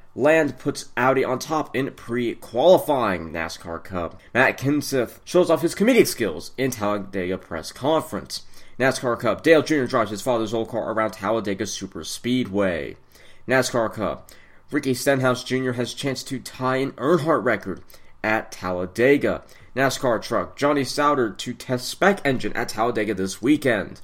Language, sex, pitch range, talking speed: English, male, 110-145 Hz, 150 wpm